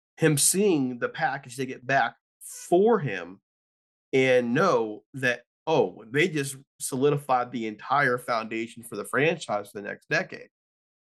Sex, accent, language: male, American, English